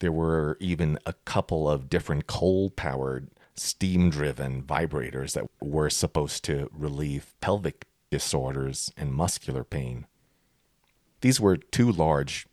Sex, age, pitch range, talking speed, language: male, 40-59, 70-90 Hz, 115 wpm, English